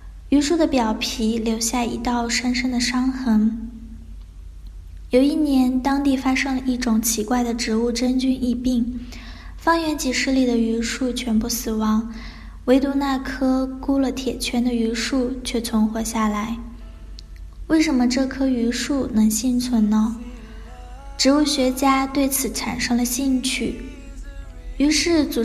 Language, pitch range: Chinese, 230-270 Hz